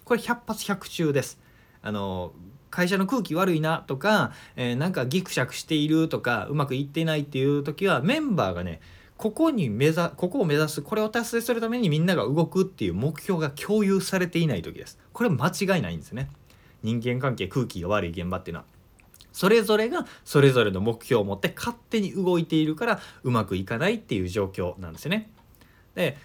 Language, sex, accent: Japanese, male, native